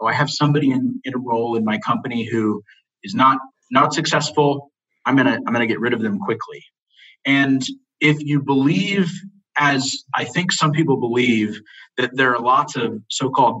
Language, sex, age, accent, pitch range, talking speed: English, male, 30-49, American, 120-145 Hz, 190 wpm